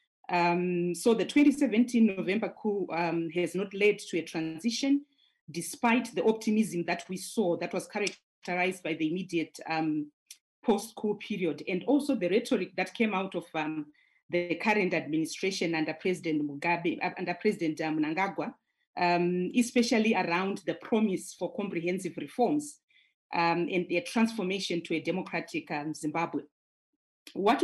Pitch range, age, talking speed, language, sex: 170-220 Hz, 40-59, 140 wpm, English, female